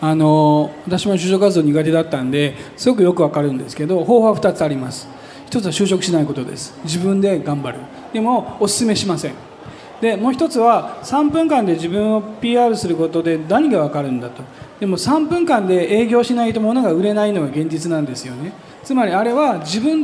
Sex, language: male, Japanese